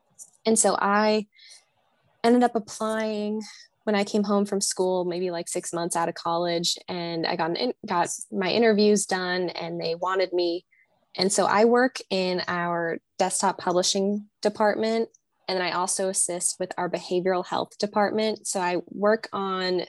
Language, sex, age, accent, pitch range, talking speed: English, female, 10-29, American, 170-205 Hz, 165 wpm